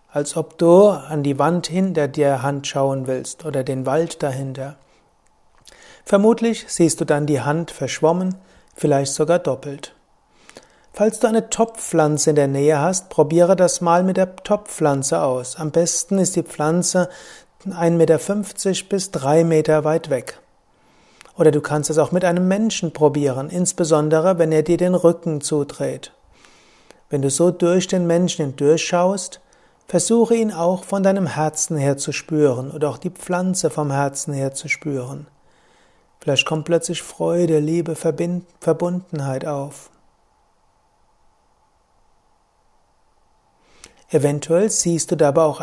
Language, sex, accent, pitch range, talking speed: German, male, German, 150-180 Hz, 140 wpm